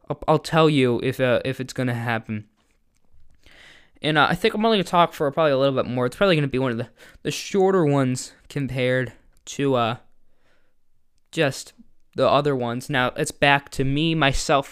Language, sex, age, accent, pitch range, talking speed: English, male, 10-29, American, 130-160 Hz, 190 wpm